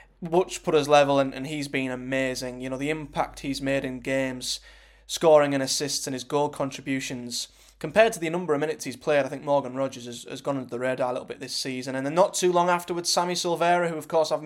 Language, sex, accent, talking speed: English, male, British, 245 wpm